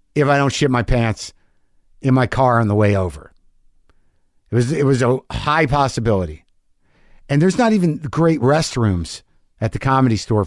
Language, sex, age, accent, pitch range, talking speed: English, male, 50-69, American, 95-155 Hz, 170 wpm